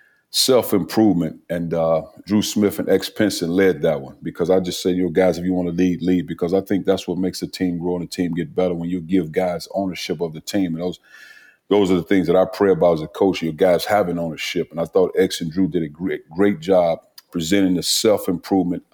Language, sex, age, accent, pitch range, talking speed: English, male, 40-59, American, 85-95 Hz, 245 wpm